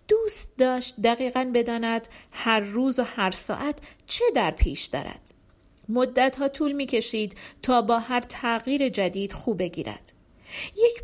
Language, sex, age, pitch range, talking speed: Persian, female, 40-59, 215-275 Hz, 135 wpm